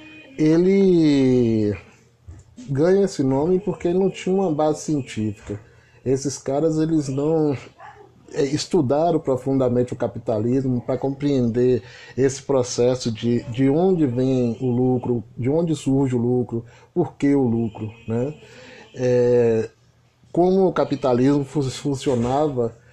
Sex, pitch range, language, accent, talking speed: male, 125-155 Hz, Portuguese, Brazilian, 115 wpm